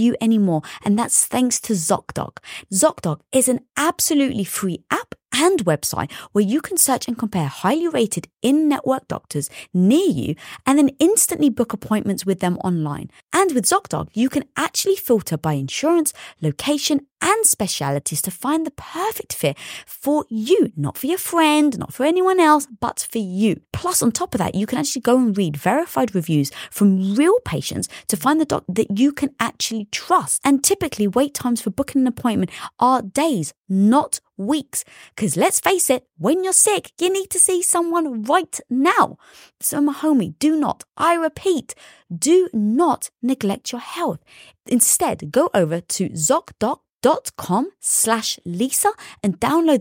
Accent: British